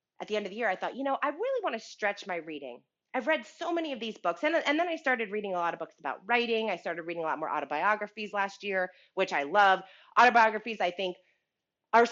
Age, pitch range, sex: 30-49, 185-270 Hz, female